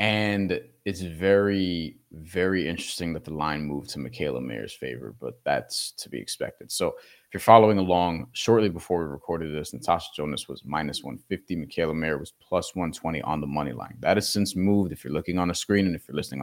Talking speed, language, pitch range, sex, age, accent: 205 wpm, English, 85-105 Hz, male, 30-49, American